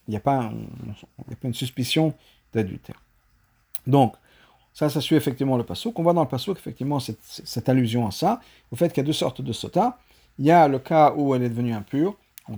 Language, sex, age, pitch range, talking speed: French, male, 50-69, 120-175 Hz, 220 wpm